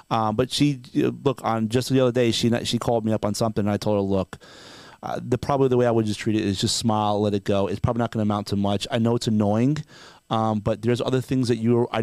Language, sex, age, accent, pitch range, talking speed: English, male, 30-49, American, 110-135 Hz, 285 wpm